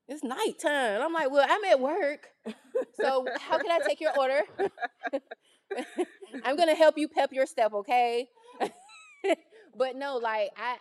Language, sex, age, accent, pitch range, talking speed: English, female, 20-39, American, 155-240 Hz, 155 wpm